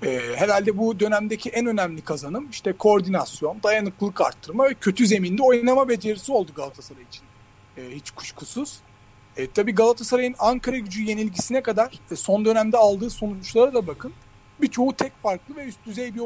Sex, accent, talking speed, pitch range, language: male, native, 160 wpm, 155-230 Hz, Turkish